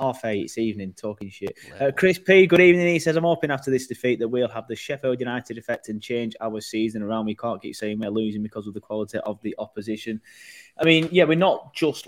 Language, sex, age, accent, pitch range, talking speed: English, male, 20-39, British, 105-130 Hz, 245 wpm